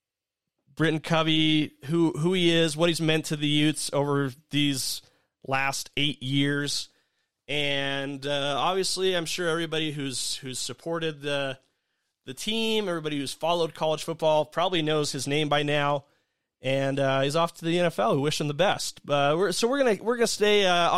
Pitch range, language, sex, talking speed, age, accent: 140-170 Hz, English, male, 175 wpm, 30-49, American